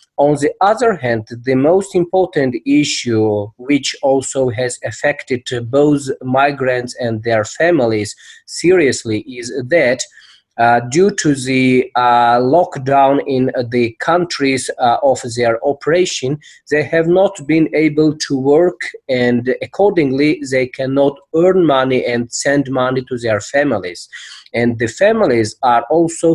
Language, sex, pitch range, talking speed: English, male, 120-150 Hz, 130 wpm